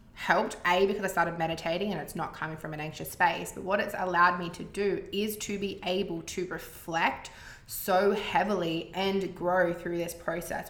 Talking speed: 190 wpm